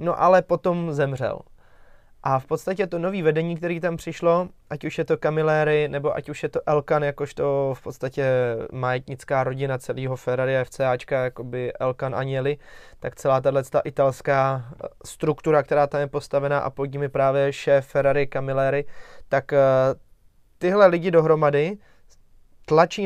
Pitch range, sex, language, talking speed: 135-155 Hz, male, Czech, 145 wpm